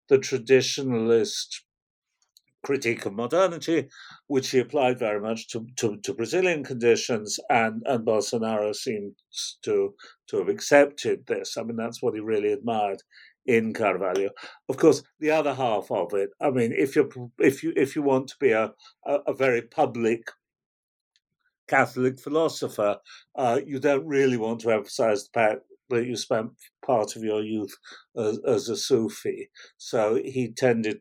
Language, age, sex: English, 50-69, male